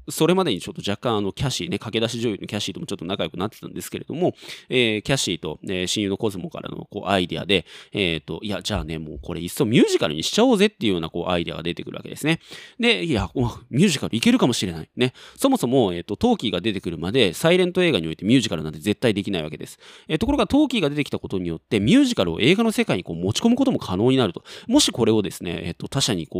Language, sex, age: Japanese, male, 20-39